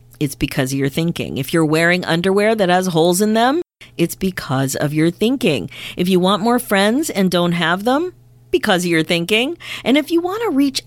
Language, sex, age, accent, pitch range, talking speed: English, female, 40-59, American, 155-240 Hz, 205 wpm